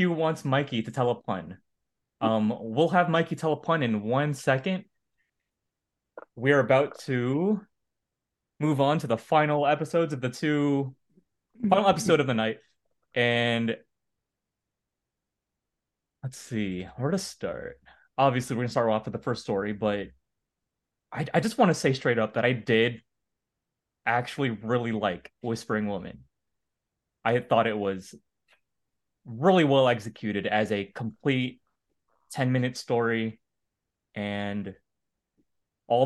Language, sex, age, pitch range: English, male, 20-39, 110-145 Hz